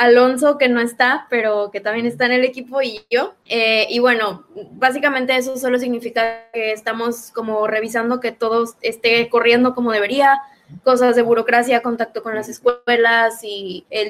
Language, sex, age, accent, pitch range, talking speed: Spanish, female, 20-39, Mexican, 220-250 Hz, 165 wpm